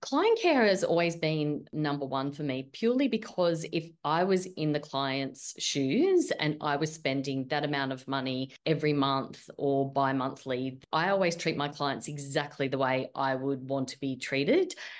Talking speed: 175 wpm